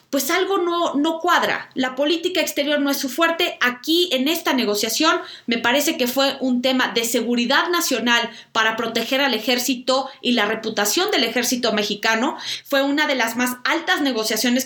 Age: 30-49